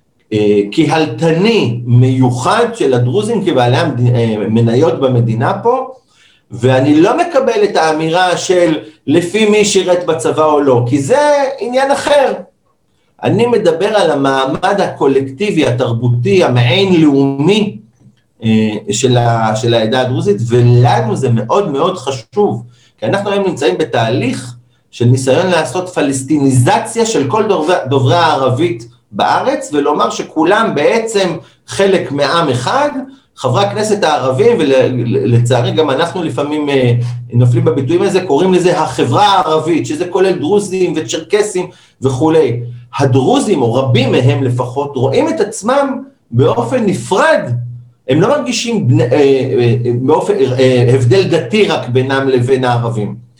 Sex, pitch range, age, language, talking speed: male, 125-190 Hz, 50-69, Hebrew, 115 wpm